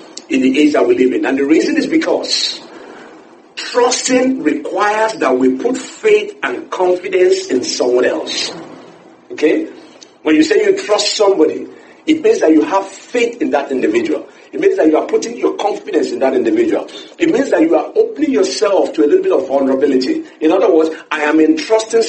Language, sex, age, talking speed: English, male, 50-69, 185 wpm